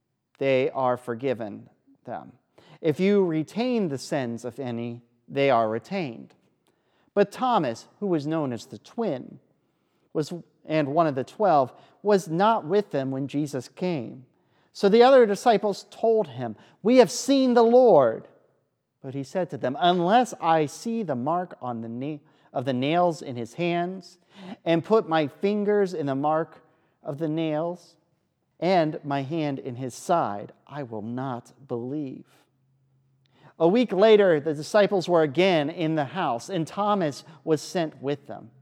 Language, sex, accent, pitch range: English, male, American, 135-195 Hz